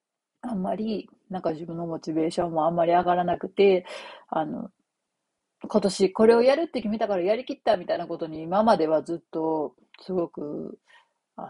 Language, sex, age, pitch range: Japanese, female, 40-59, 165-240 Hz